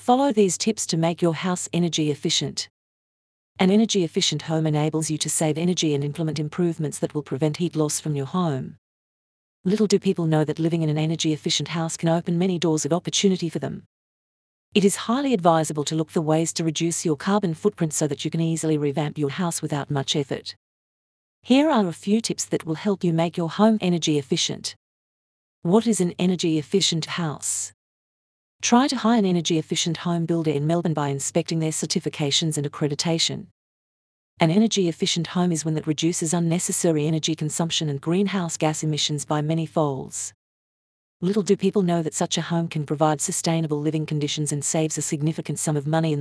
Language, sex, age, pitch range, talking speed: English, female, 40-59, 155-180 Hz, 190 wpm